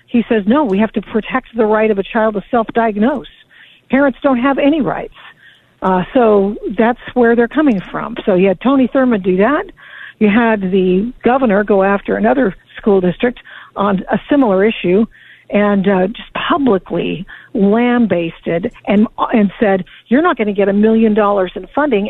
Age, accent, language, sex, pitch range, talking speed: 60-79, American, English, female, 200-245 Hz, 175 wpm